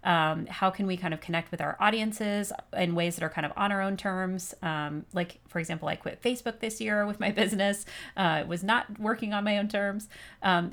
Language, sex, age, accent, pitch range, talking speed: English, female, 30-49, American, 175-215 Hz, 235 wpm